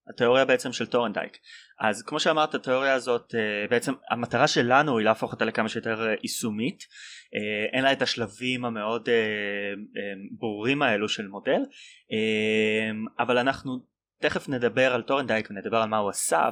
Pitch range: 110-145 Hz